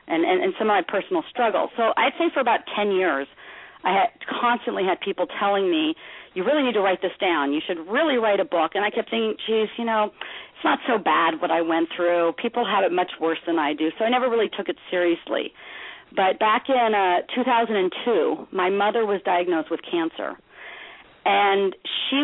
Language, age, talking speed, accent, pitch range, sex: English, 40-59, 210 wpm, American, 175-245 Hz, female